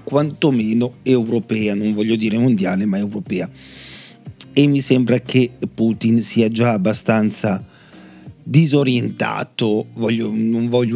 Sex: male